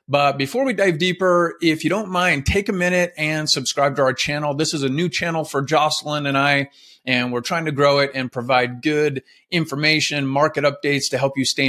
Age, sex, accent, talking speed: 30-49, male, American, 215 wpm